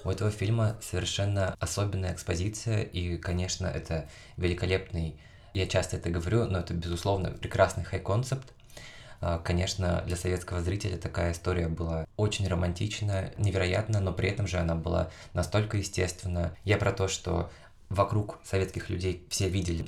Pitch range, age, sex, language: 85-100 Hz, 20-39, male, Russian